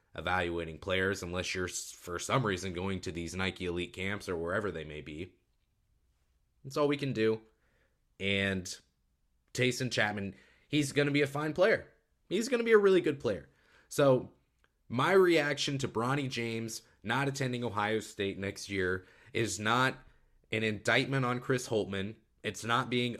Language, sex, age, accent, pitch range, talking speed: English, male, 20-39, American, 95-130 Hz, 160 wpm